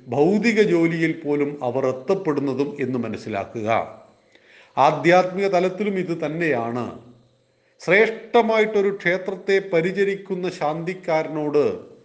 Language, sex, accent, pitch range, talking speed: Malayalam, male, native, 140-180 Hz, 75 wpm